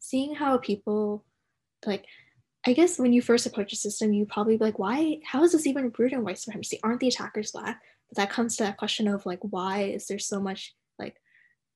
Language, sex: English, female